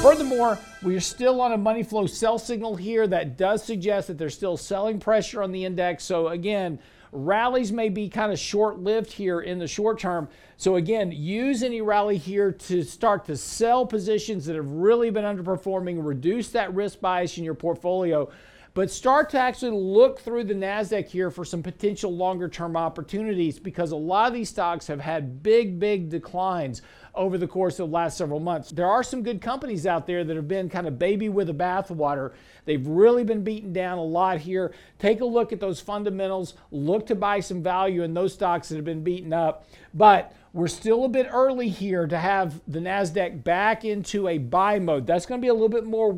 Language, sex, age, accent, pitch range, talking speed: English, male, 50-69, American, 170-215 Hz, 205 wpm